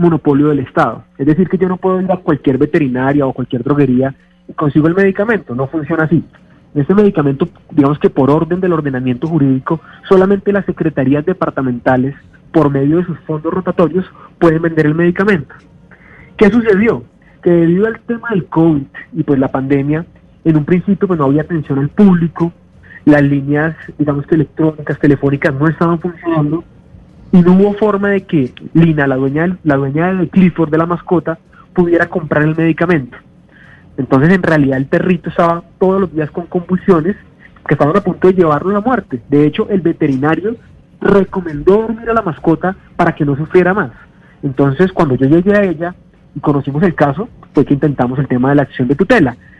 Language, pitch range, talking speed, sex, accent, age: Spanish, 145-185 Hz, 180 wpm, male, Colombian, 30-49